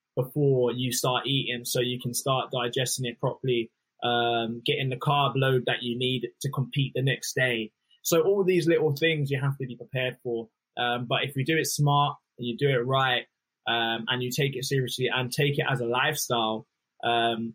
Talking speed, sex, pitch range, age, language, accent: 205 wpm, male, 125-145 Hz, 20-39, English, British